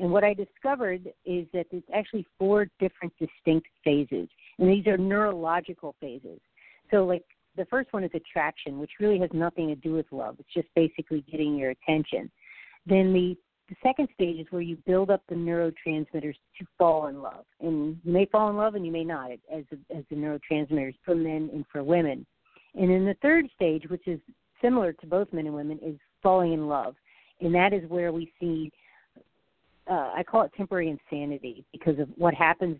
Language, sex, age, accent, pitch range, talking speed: English, female, 50-69, American, 155-185 Hz, 195 wpm